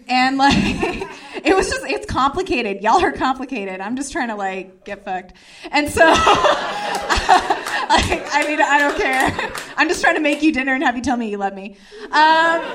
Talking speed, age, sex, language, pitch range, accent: 195 wpm, 20-39, female, English, 205-295 Hz, American